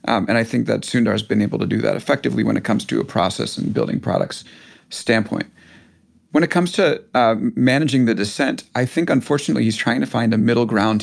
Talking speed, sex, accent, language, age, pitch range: 225 wpm, male, American, English, 40-59, 115-145 Hz